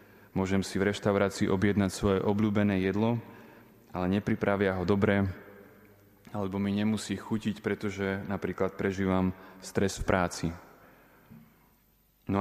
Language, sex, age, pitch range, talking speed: Slovak, male, 20-39, 95-105 Hz, 110 wpm